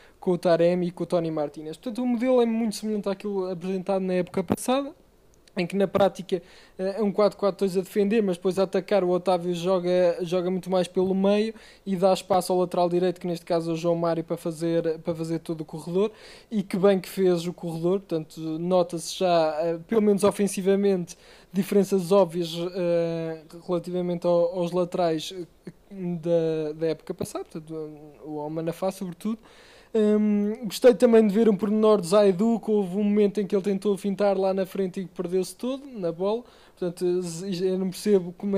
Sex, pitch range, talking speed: male, 175-205 Hz, 185 wpm